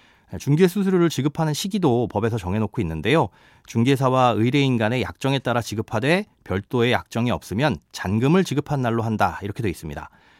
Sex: male